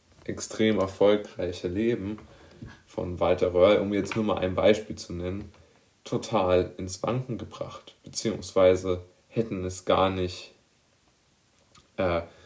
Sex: male